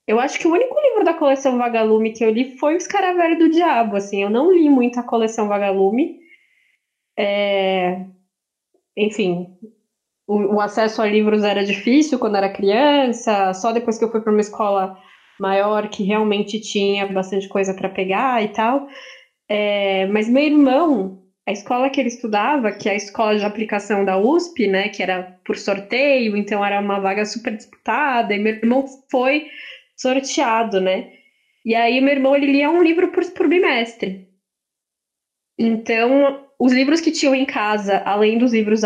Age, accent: 10-29, Brazilian